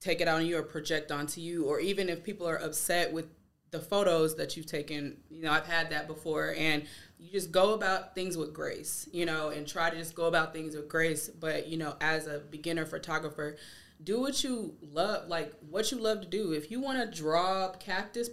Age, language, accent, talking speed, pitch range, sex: 20-39, English, American, 225 wpm, 160-210 Hz, female